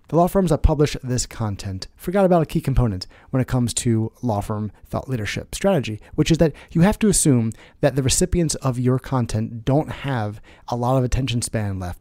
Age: 30-49